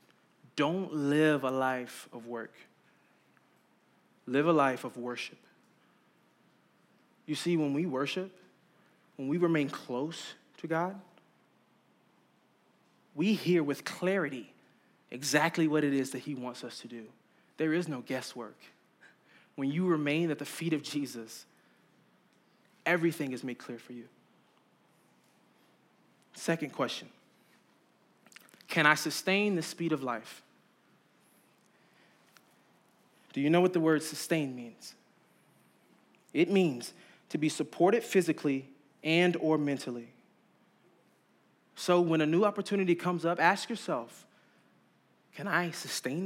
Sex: male